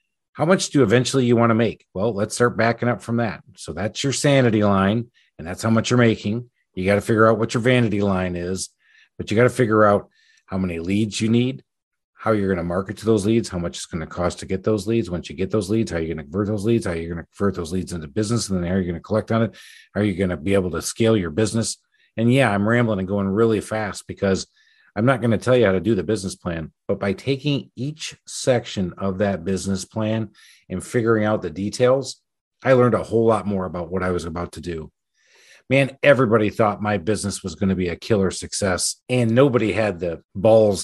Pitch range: 95-115 Hz